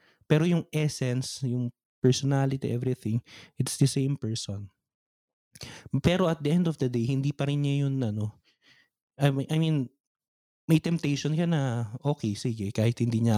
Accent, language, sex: native, Filipino, male